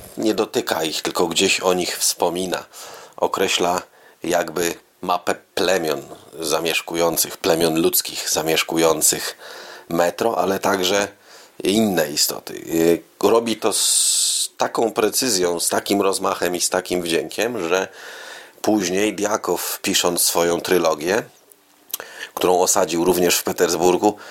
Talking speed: 110 wpm